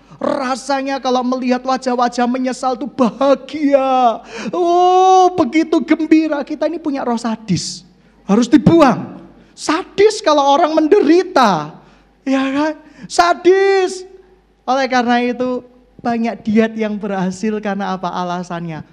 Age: 30-49